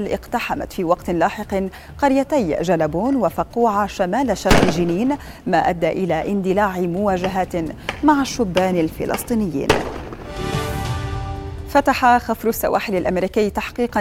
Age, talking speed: 30-49, 100 wpm